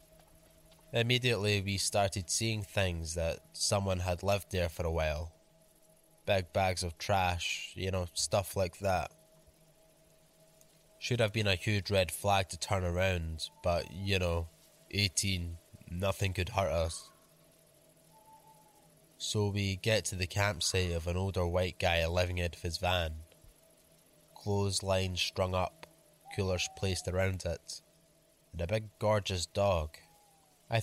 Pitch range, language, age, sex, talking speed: 90-110 Hz, English, 20-39, male, 135 wpm